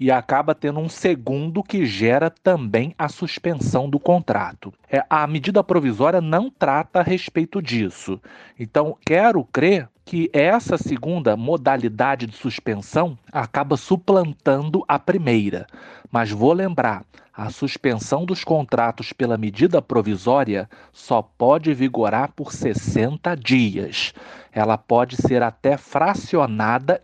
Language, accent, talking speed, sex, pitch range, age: Portuguese, Brazilian, 120 wpm, male, 115-165 Hz, 40-59